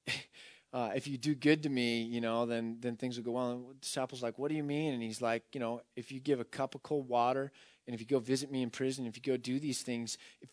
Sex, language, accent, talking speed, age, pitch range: male, English, American, 290 wpm, 30-49, 115-150 Hz